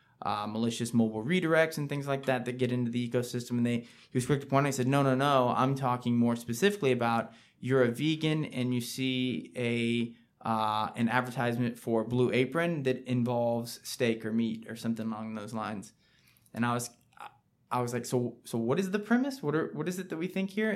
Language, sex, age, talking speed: English, male, 20-39, 215 wpm